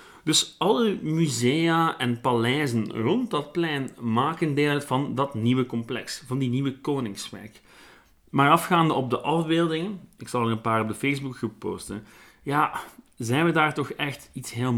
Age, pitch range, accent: 40-59, 115-160 Hz, Dutch